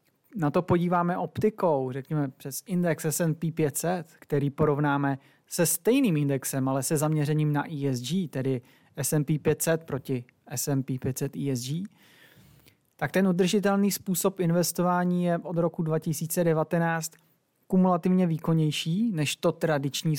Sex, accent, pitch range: male, native, 150-180 Hz